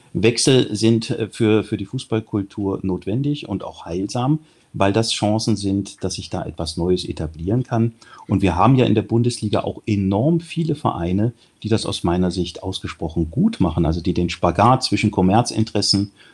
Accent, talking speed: German, 170 wpm